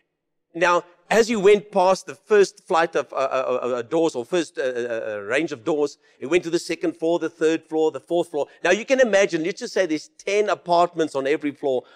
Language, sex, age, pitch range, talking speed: English, male, 50-69, 160-220 Hz, 225 wpm